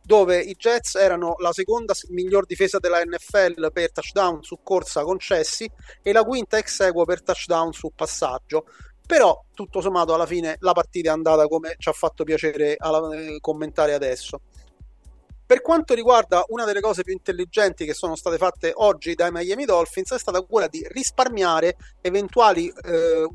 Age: 30-49